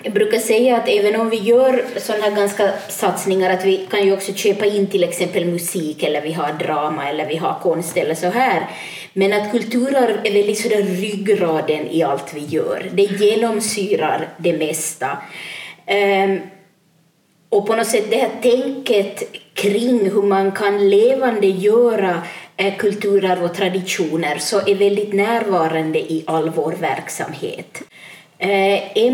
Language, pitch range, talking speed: Swedish, 180-215 Hz, 150 wpm